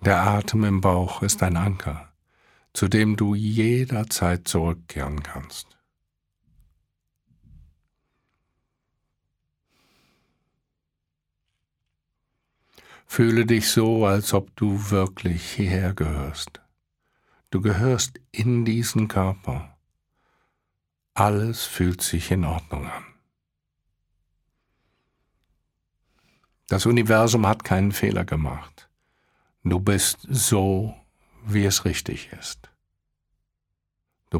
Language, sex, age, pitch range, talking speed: German, male, 60-79, 80-110 Hz, 80 wpm